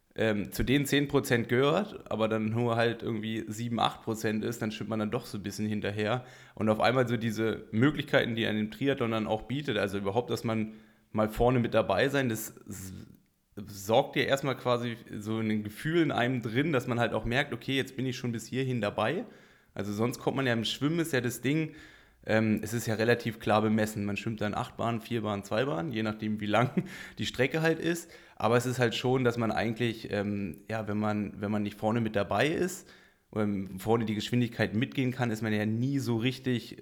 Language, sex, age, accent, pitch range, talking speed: German, male, 20-39, German, 110-125 Hz, 215 wpm